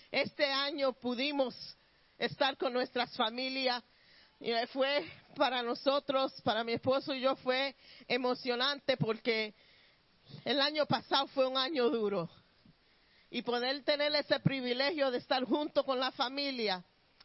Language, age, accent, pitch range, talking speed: Spanish, 40-59, American, 230-275 Hz, 130 wpm